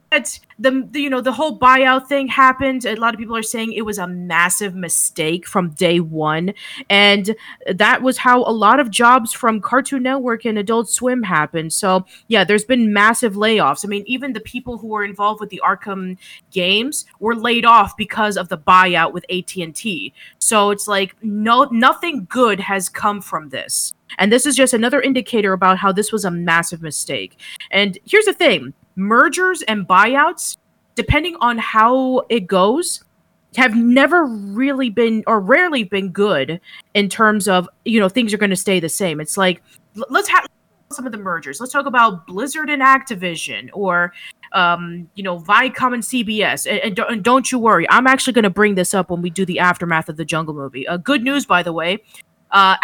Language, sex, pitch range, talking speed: English, female, 185-255 Hz, 190 wpm